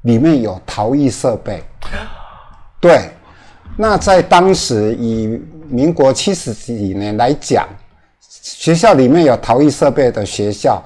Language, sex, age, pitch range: Chinese, male, 50-69, 100-145 Hz